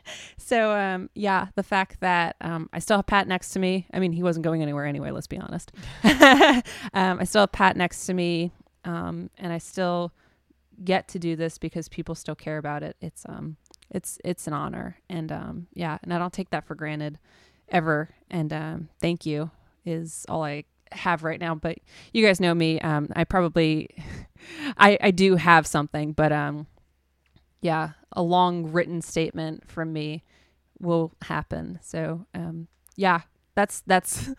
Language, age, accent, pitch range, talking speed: English, 20-39, American, 160-195 Hz, 180 wpm